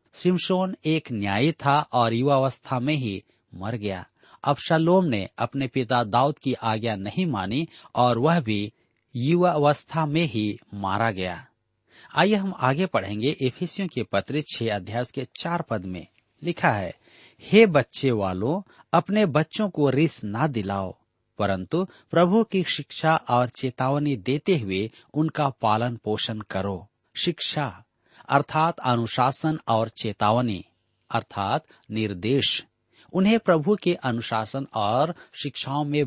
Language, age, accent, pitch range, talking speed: Hindi, 40-59, native, 110-155 Hz, 130 wpm